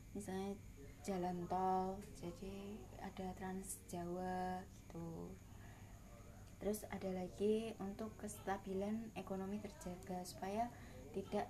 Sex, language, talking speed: female, Indonesian, 90 wpm